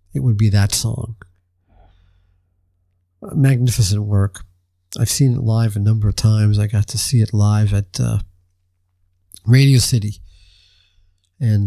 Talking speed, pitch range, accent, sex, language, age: 140 wpm, 90-120 Hz, American, male, English, 50-69